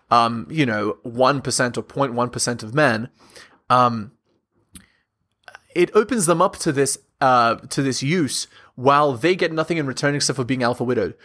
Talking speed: 160 wpm